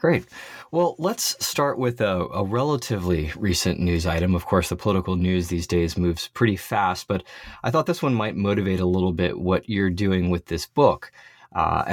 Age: 20-39